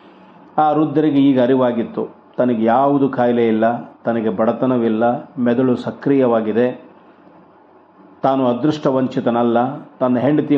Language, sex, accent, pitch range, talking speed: Kannada, male, native, 115-135 Hz, 95 wpm